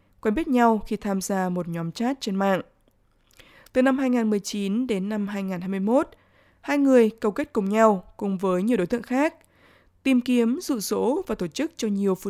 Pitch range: 195-250 Hz